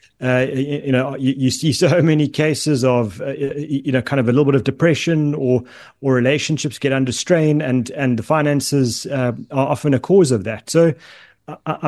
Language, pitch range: English, 125-150 Hz